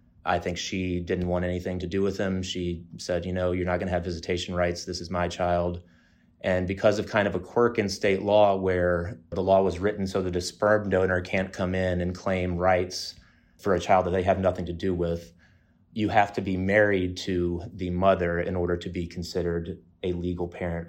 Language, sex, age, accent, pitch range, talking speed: English, male, 30-49, American, 90-95 Hz, 220 wpm